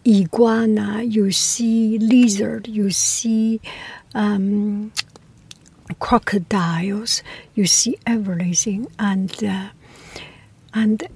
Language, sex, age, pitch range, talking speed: English, female, 60-79, 195-240 Hz, 70 wpm